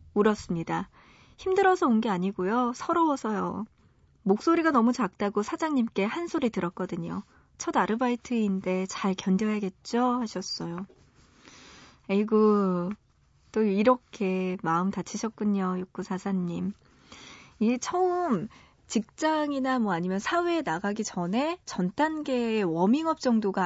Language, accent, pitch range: Korean, native, 185-265 Hz